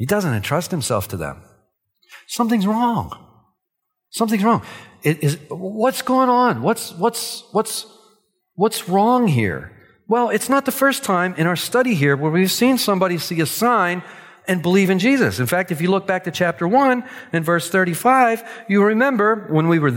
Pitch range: 145-225 Hz